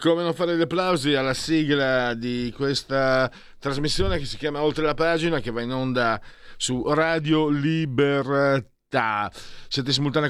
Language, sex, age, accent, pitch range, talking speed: Italian, male, 40-59, native, 120-150 Hz, 145 wpm